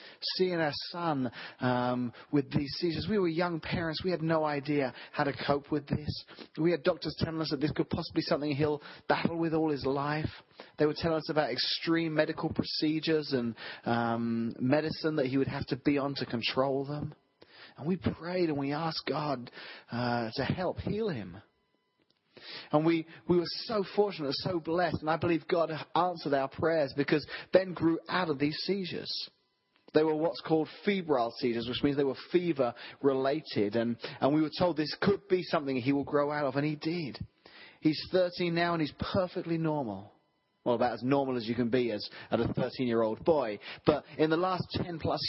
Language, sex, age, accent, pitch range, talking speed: English, male, 30-49, British, 135-170 Hz, 190 wpm